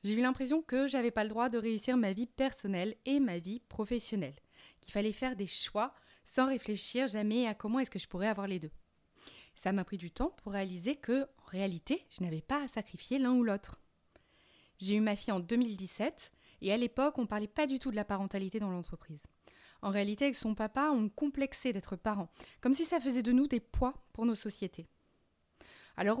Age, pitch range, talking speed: 20-39, 195-250 Hz, 210 wpm